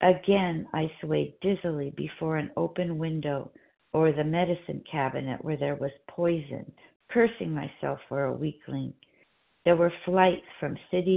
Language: English